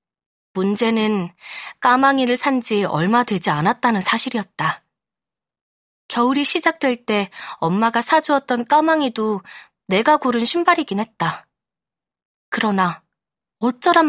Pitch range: 195-285 Hz